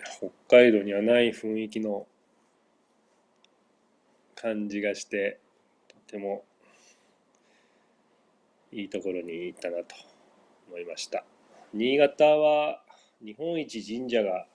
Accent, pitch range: native, 95-110 Hz